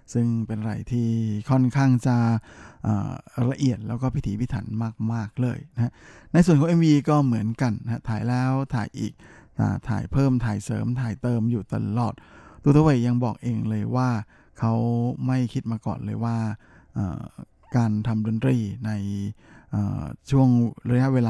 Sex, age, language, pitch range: male, 20-39, Thai, 110-130 Hz